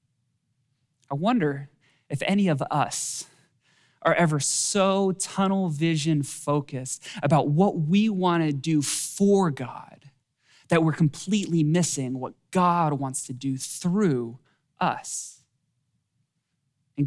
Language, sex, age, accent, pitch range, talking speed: English, male, 20-39, American, 140-180 Hz, 110 wpm